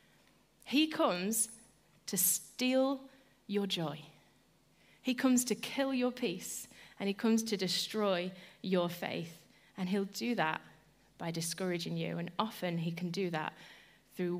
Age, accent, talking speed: 30-49, British, 140 wpm